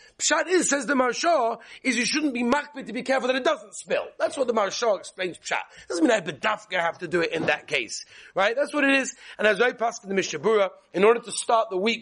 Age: 30-49